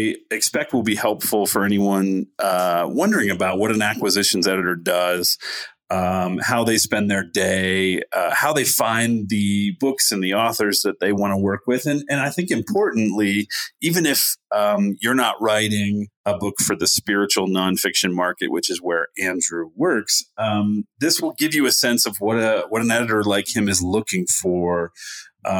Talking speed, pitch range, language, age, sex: 180 wpm, 95-115 Hz, English, 30-49, male